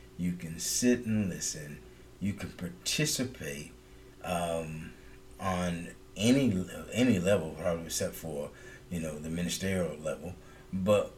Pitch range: 85-100 Hz